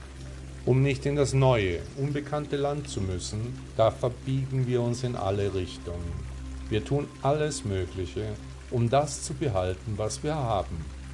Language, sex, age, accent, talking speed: German, male, 50-69, German, 145 wpm